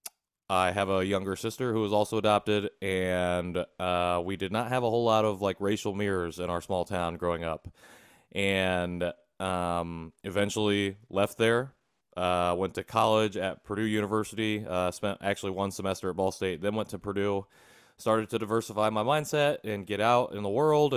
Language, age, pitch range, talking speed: English, 20-39, 95-105 Hz, 180 wpm